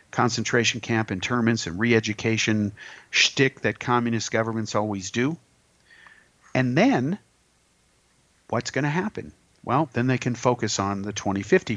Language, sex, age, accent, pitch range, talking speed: English, male, 50-69, American, 105-140 Hz, 125 wpm